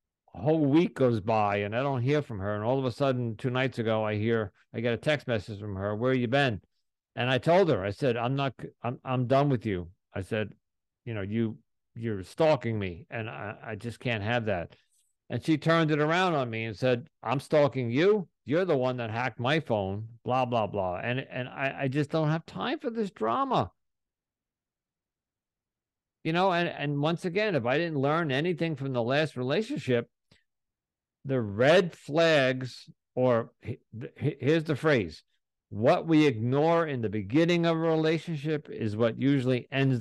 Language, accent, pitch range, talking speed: English, American, 115-155 Hz, 190 wpm